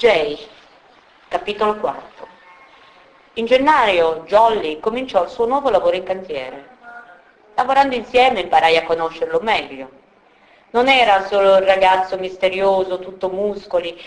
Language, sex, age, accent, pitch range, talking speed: Italian, female, 40-59, native, 175-250 Hz, 115 wpm